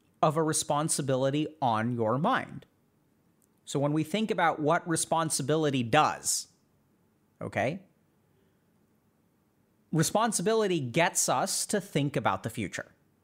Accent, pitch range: American, 130-165 Hz